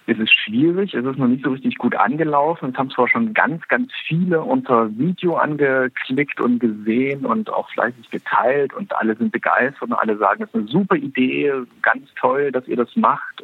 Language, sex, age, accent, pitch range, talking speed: German, male, 50-69, German, 115-150 Hz, 200 wpm